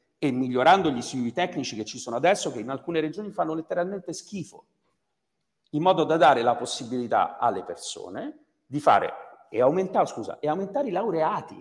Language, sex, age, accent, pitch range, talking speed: Italian, male, 50-69, native, 150-210 Hz, 170 wpm